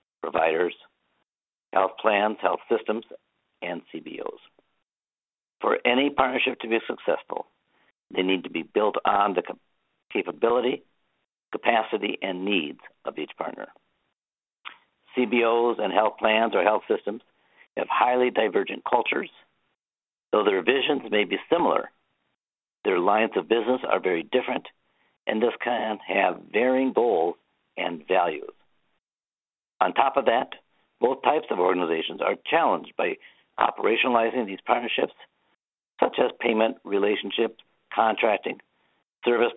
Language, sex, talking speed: English, male, 120 wpm